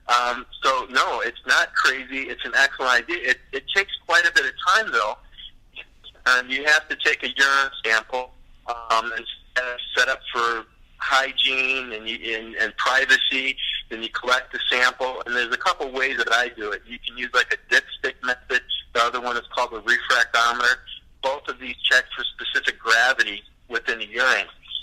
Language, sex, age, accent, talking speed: English, male, 50-69, American, 180 wpm